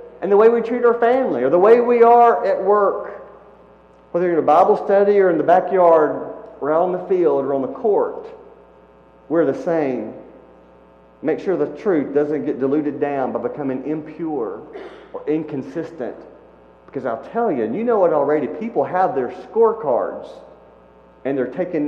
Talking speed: 175 wpm